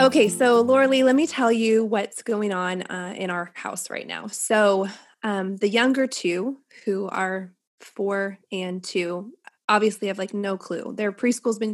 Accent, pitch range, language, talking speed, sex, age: American, 200-250 Hz, English, 185 wpm, female, 20-39